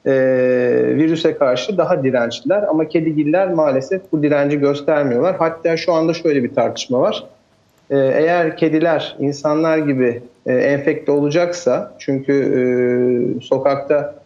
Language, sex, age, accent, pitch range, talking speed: Turkish, male, 40-59, native, 125-160 Hz, 120 wpm